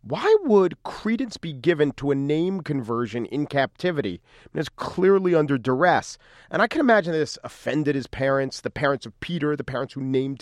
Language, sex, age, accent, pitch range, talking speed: English, male, 40-59, American, 120-150 Hz, 180 wpm